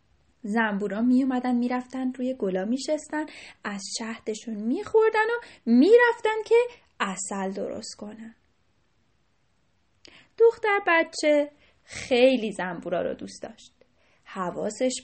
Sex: female